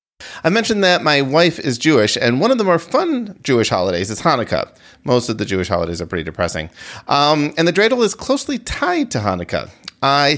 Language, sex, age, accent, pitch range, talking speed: English, male, 30-49, American, 120-195 Hz, 200 wpm